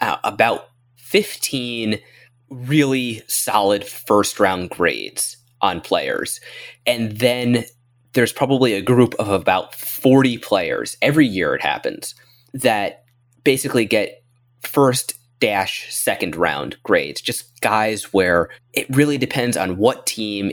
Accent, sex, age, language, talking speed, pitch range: American, male, 20-39, English, 120 wpm, 105-125 Hz